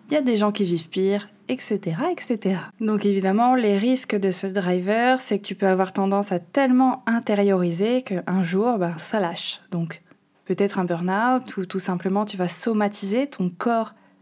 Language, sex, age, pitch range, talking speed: French, female, 20-39, 195-235 Hz, 180 wpm